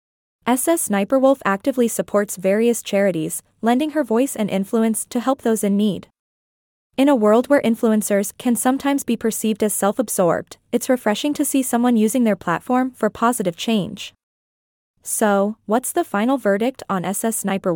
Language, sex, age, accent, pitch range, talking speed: English, female, 20-39, American, 200-245 Hz, 155 wpm